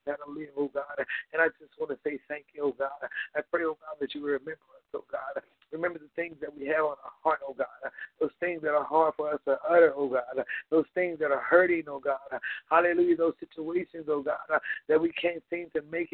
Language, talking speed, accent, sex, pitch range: English, 240 wpm, American, male, 150-175 Hz